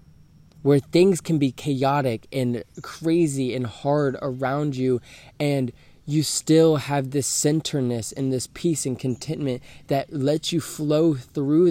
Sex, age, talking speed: male, 20-39, 140 wpm